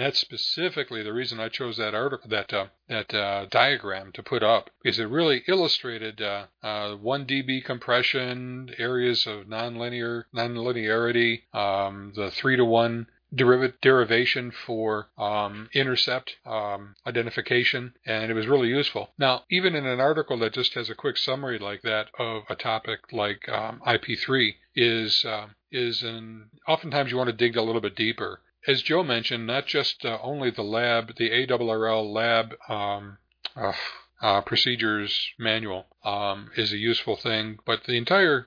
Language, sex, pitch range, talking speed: English, male, 110-130 Hz, 160 wpm